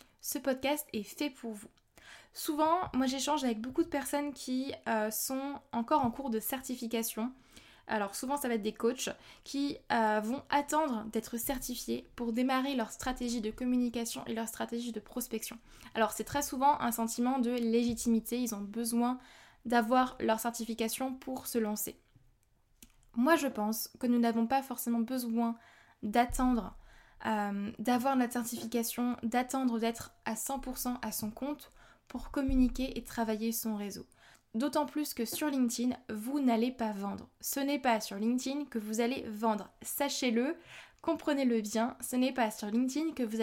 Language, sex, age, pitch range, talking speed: French, female, 10-29, 225-270 Hz, 160 wpm